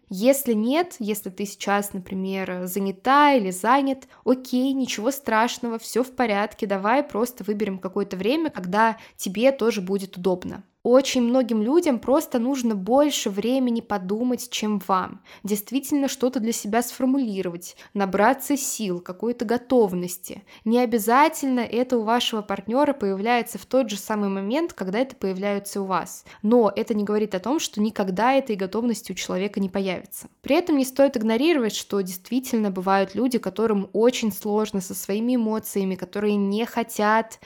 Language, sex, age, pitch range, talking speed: Russian, female, 20-39, 200-250 Hz, 150 wpm